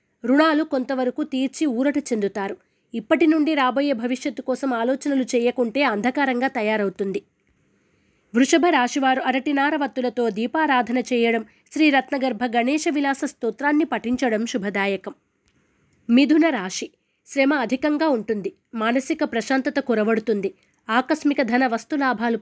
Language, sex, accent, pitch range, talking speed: Telugu, female, native, 235-285 Hz, 95 wpm